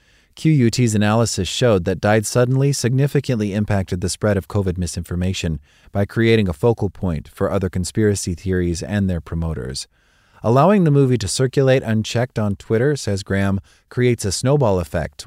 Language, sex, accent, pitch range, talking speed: English, male, American, 90-115 Hz, 155 wpm